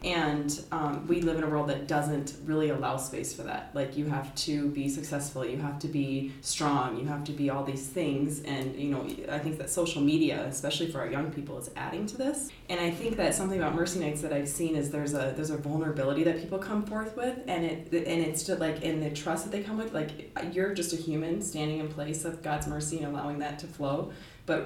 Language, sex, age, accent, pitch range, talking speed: English, female, 20-39, American, 145-165 Hz, 245 wpm